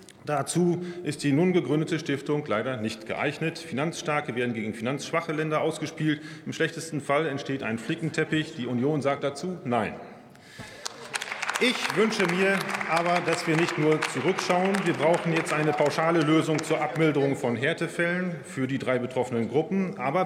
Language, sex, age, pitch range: German, male, 40-59, 140-170 Hz